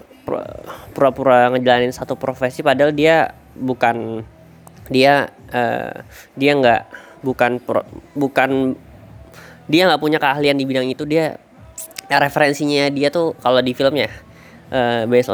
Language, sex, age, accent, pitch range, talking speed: Indonesian, female, 20-39, native, 115-140 Hz, 120 wpm